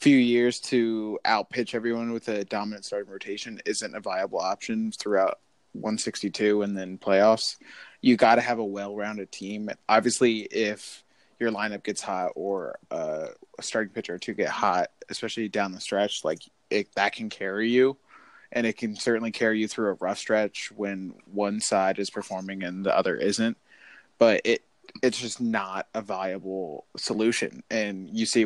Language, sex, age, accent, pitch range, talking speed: English, male, 20-39, American, 100-120 Hz, 170 wpm